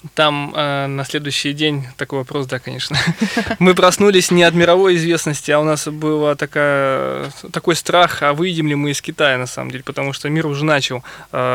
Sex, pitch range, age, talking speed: male, 135-160 Hz, 20-39, 185 wpm